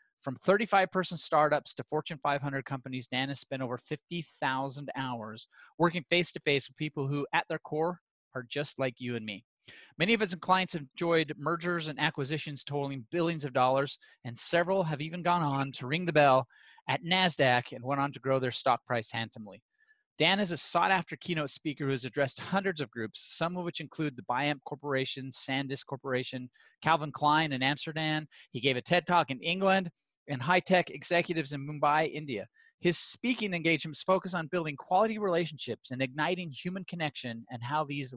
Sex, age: male, 30-49